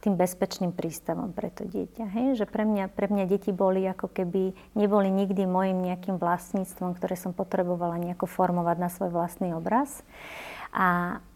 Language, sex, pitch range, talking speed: Slovak, female, 180-205 Hz, 165 wpm